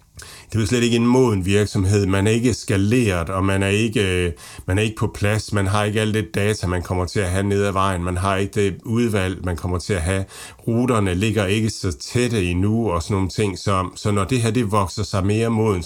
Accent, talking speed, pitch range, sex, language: native, 240 wpm, 90-110 Hz, male, Danish